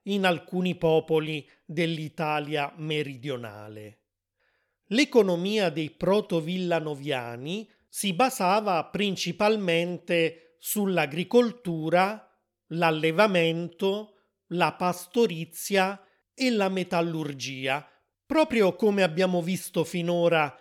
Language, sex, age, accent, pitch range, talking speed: Italian, male, 30-49, native, 155-195 Hz, 65 wpm